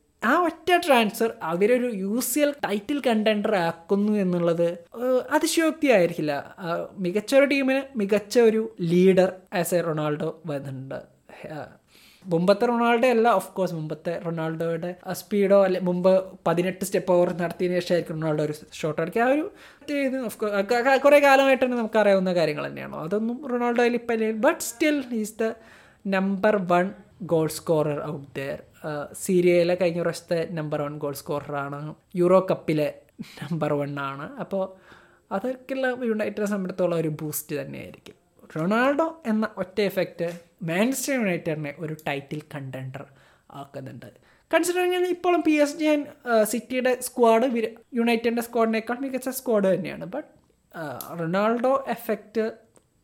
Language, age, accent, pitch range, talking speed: Malayalam, 20-39, native, 170-245 Hz, 120 wpm